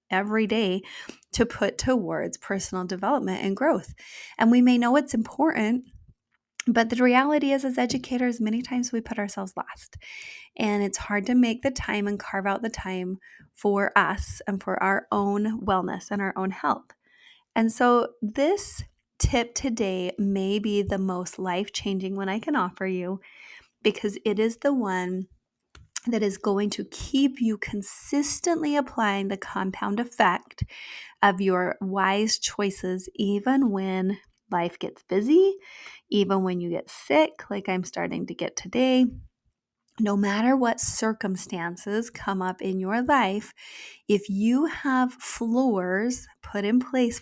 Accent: American